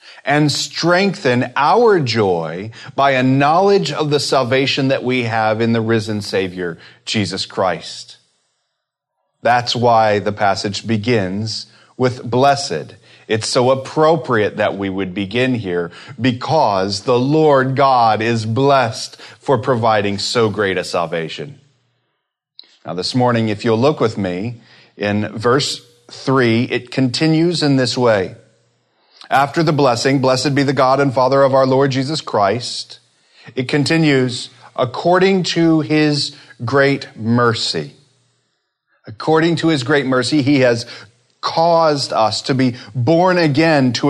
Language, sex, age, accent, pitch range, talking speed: English, male, 30-49, American, 115-145 Hz, 130 wpm